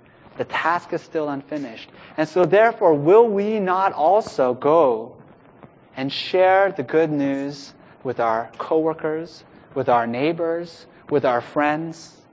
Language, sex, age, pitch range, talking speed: English, male, 30-49, 145-195 Hz, 130 wpm